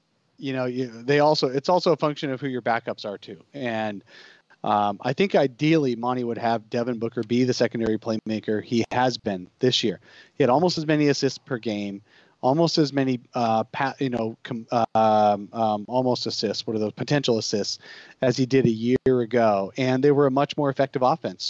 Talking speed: 205 wpm